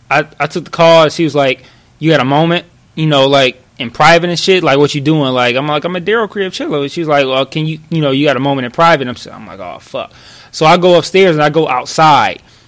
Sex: male